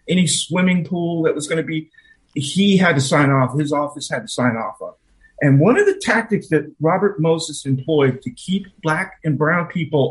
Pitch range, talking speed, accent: 135-190 Hz, 210 wpm, American